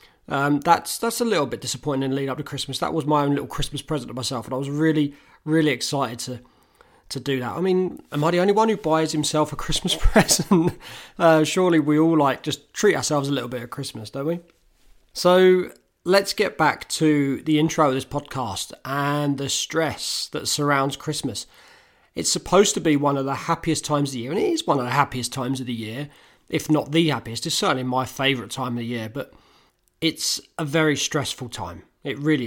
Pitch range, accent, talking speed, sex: 130-160 Hz, British, 220 wpm, male